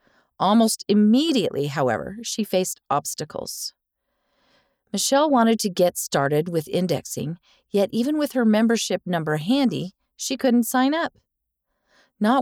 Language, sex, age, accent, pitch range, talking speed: English, female, 40-59, American, 180-255 Hz, 120 wpm